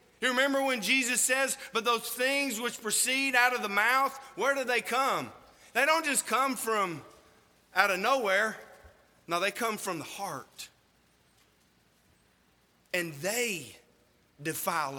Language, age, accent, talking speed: English, 40-59, American, 140 wpm